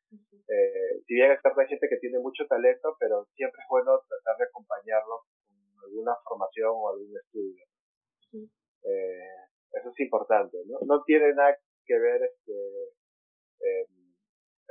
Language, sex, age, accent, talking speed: Spanish, male, 30-49, Argentinian, 140 wpm